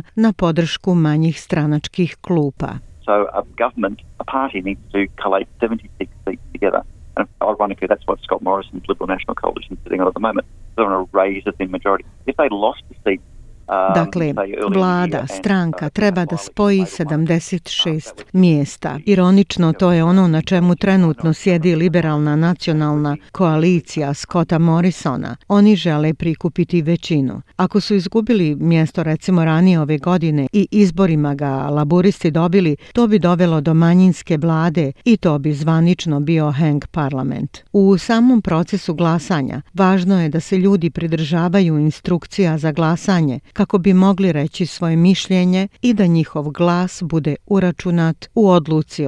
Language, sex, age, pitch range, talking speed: Croatian, female, 50-69, 150-185 Hz, 115 wpm